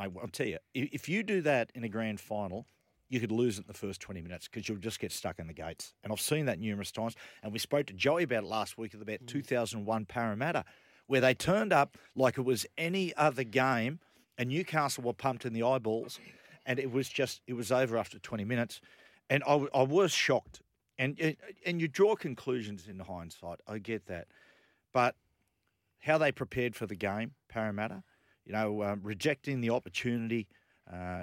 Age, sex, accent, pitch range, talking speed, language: 40-59, male, Australian, 100-120 Hz, 200 wpm, English